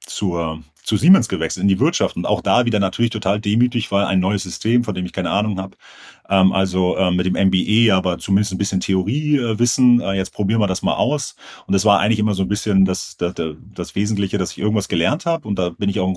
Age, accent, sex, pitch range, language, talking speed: 40-59, German, male, 95-120 Hz, German, 230 wpm